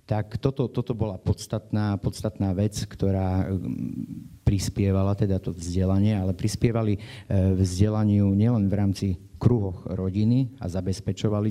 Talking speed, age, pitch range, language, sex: 115 wpm, 30-49, 95-110 Hz, Slovak, male